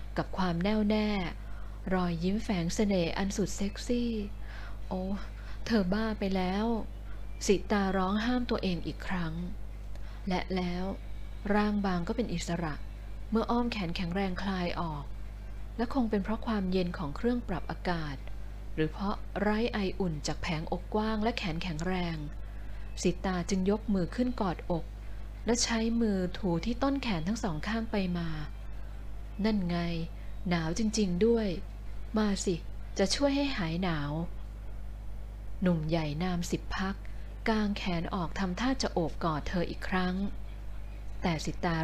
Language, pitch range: Thai, 135-205 Hz